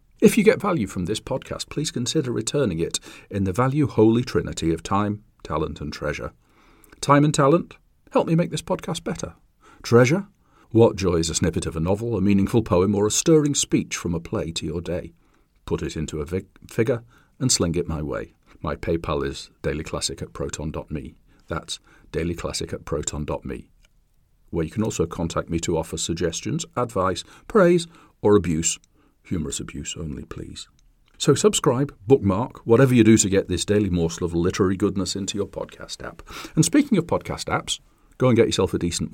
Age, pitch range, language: 40-59, 85-125 Hz, English